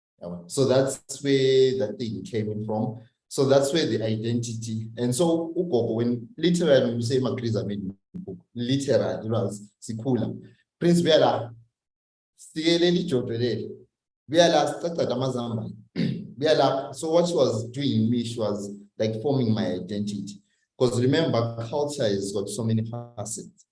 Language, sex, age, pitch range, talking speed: English, male, 30-49, 105-130 Hz, 110 wpm